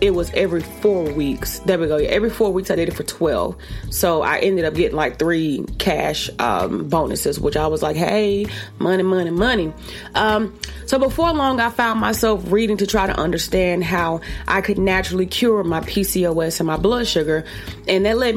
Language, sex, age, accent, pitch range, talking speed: English, female, 30-49, American, 165-215 Hz, 195 wpm